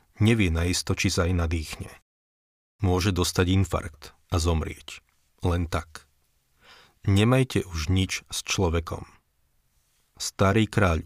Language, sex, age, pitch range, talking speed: Slovak, male, 40-59, 85-100 Hz, 110 wpm